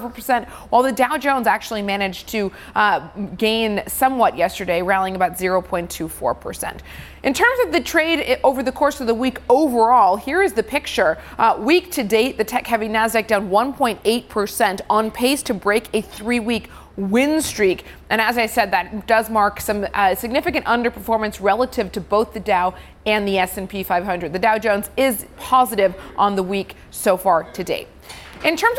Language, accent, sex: English, American, female